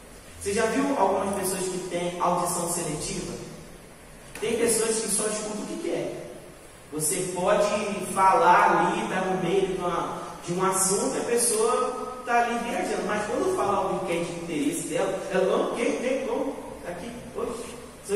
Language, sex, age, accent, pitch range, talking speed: Portuguese, male, 20-39, Brazilian, 165-215 Hz, 175 wpm